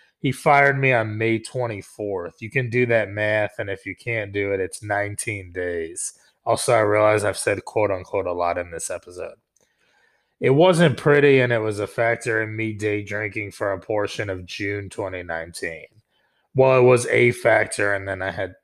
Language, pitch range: English, 100-130 Hz